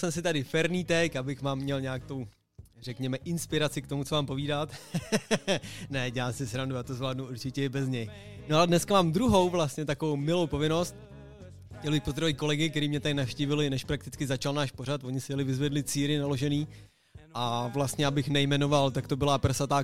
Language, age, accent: Czech, 20-39, native